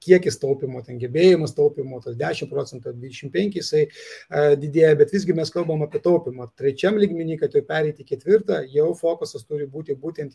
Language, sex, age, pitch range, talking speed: English, male, 30-49, 140-205 Hz, 170 wpm